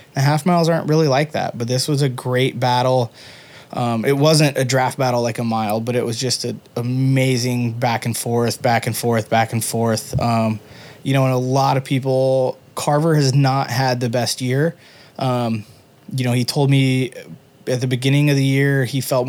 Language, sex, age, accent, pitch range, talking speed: English, male, 20-39, American, 120-140 Hz, 205 wpm